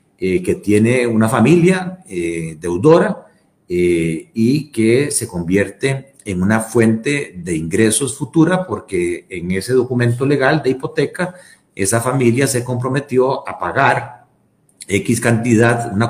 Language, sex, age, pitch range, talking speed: Spanish, male, 50-69, 110-150 Hz, 125 wpm